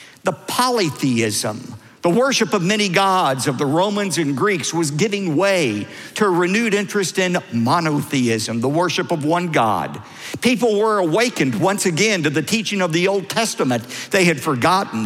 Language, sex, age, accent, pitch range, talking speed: English, male, 50-69, American, 130-190 Hz, 165 wpm